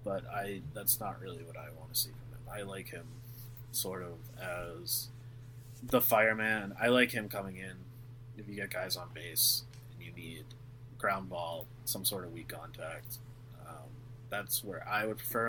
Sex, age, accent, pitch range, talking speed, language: male, 20-39, American, 100-120 Hz, 180 wpm, English